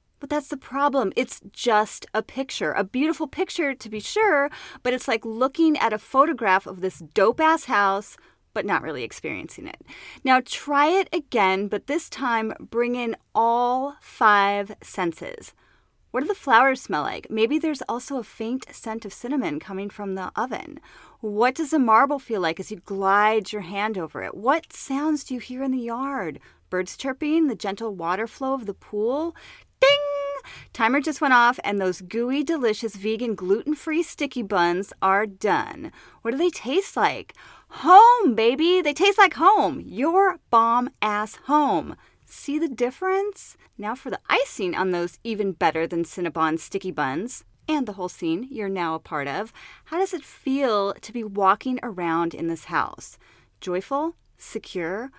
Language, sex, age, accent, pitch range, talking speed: English, female, 30-49, American, 200-295 Hz, 165 wpm